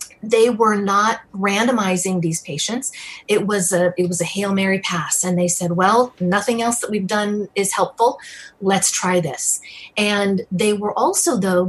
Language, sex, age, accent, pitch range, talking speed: English, female, 30-49, American, 180-215 Hz, 175 wpm